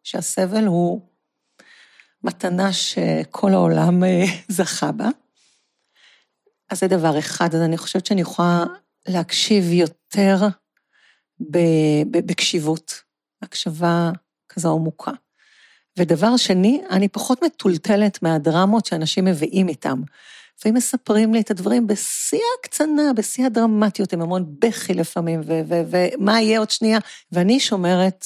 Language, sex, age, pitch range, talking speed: Hebrew, female, 50-69, 165-210 Hz, 110 wpm